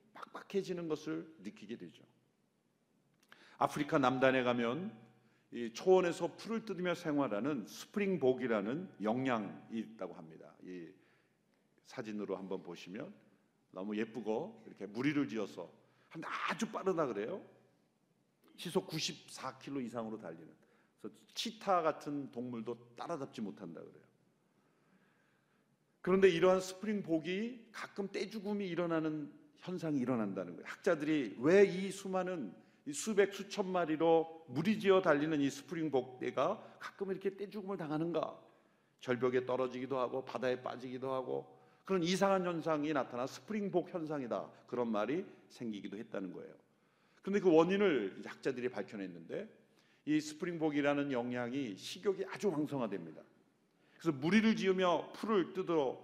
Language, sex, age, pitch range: Korean, male, 50-69, 125-190 Hz